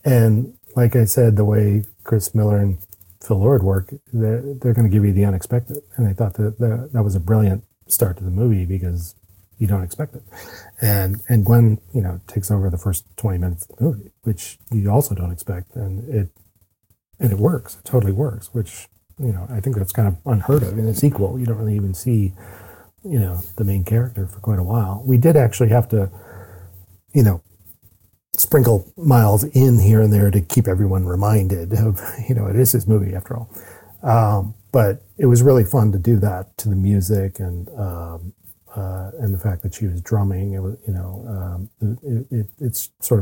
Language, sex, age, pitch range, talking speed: English, male, 40-59, 95-115 Hz, 205 wpm